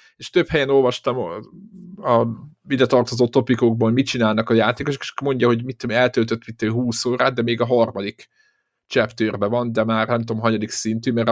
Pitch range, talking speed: 110-125 Hz, 175 wpm